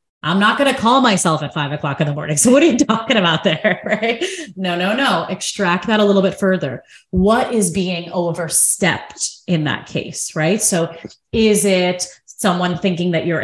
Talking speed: 195 wpm